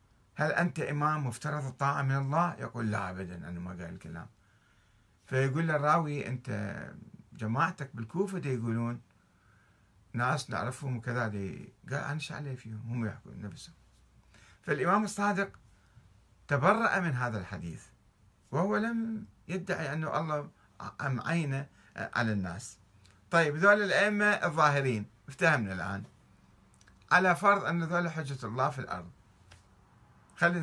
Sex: male